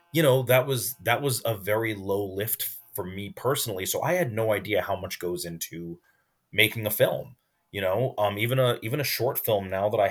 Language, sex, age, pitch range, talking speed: English, male, 30-49, 95-120 Hz, 220 wpm